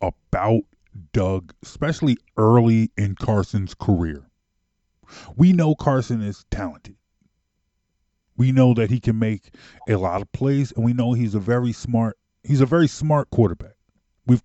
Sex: male